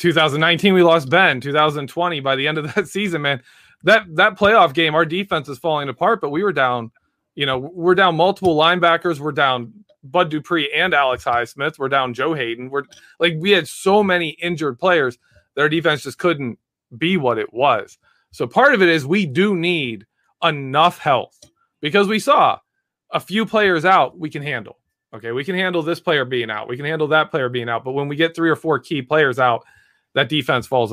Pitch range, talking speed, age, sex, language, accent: 130-180 Hz, 210 wpm, 20-39, male, English, American